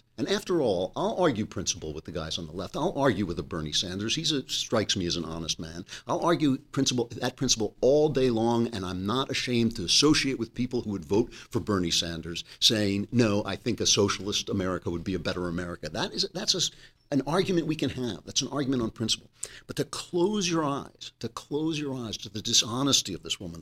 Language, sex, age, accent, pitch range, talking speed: English, male, 50-69, American, 105-165 Hz, 225 wpm